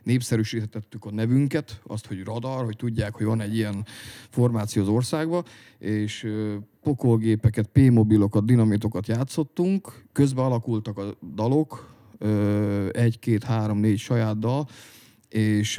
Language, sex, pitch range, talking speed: Hungarian, male, 105-120 Hz, 125 wpm